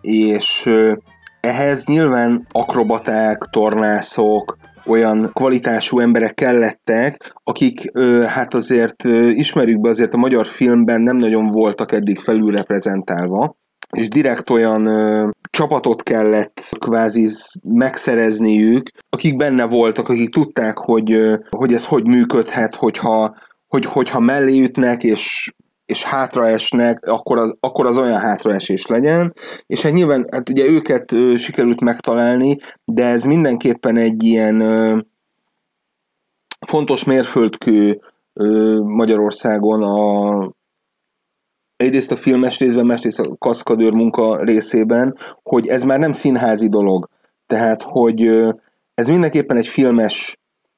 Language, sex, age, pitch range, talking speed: Hungarian, male, 30-49, 110-125 Hz, 120 wpm